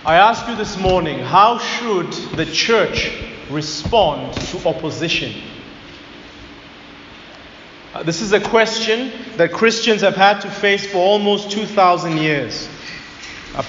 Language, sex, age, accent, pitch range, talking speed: English, male, 30-49, South African, 175-225 Hz, 125 wpm